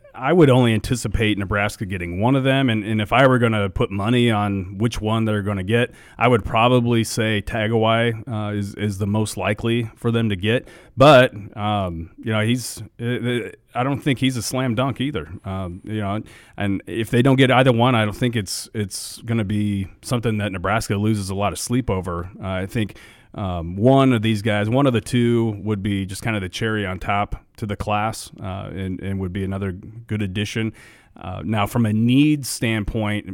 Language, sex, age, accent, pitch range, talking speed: English, male, 30-49, American, 95-115 Hz, 215 wpm